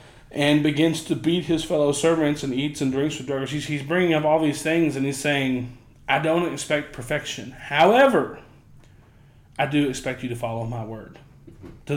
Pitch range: 130-165 Hz